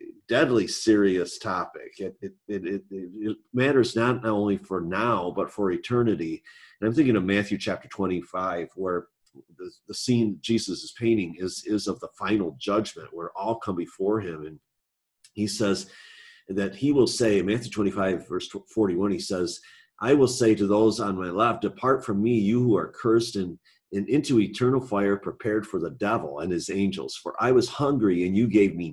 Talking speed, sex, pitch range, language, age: 180 wpm, male, 95-125 Hz, English, 40-59